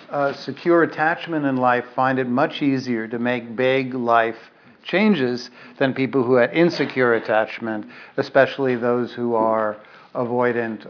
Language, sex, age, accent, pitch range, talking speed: English, male, 60-79, American, 130-160 Hz, 140 wpm